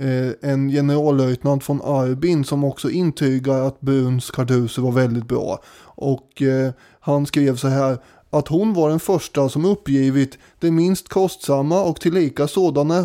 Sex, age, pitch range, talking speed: male, 20-39, 135-165 Hz, 150 wpm